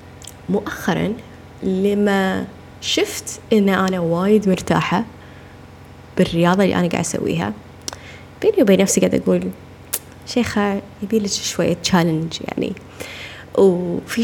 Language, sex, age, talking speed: Arabic, female, 20-39, 100 wpm